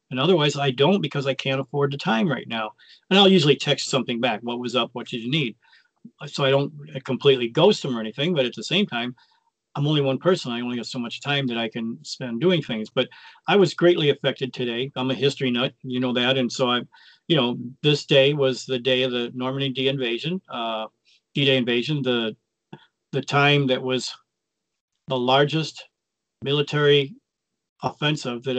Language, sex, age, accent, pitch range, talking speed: English, male, 40-59, American, 125-145 Hz, 200 wpm